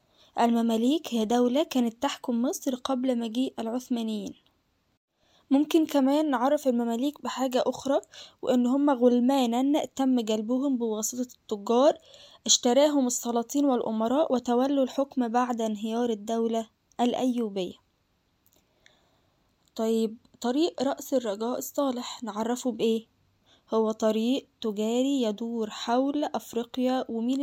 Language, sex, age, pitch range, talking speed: Arabic, female, 10-29, 225-265 Hz, 100 wpm